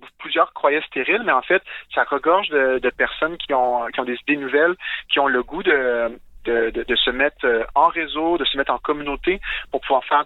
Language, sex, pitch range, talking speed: French, male, 120-155 Hz, 220 wpm